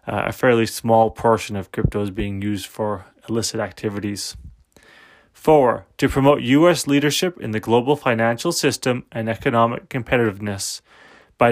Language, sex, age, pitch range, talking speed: English, male, 30-49, 115-145 Hz, 140 wpm